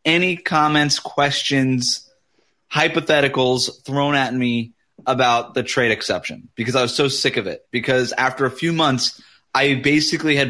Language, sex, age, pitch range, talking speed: English, male, 20-39, 120-150 Hz, 150 wpm